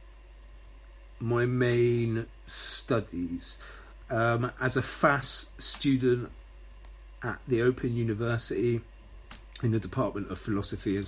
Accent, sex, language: British, male, English